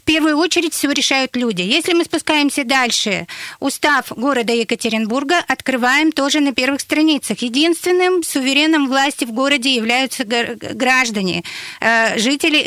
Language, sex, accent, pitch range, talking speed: Russian, female, native, 240-285 Hz, 125 wpm